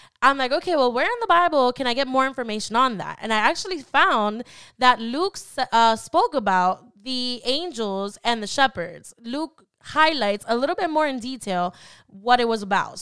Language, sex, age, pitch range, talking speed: English, female, 10-29, 220-290 Hz, 190 wpm